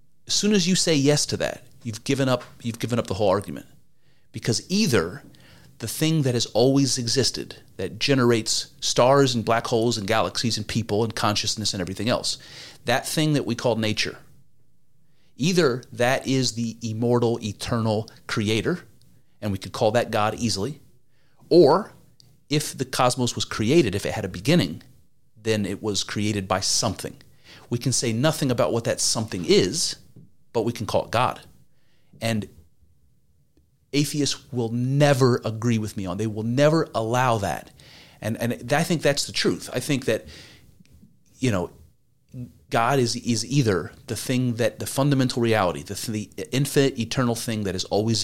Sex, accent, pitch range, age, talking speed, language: male, American, 110-135 Hz, 30-49, 170 wpm, English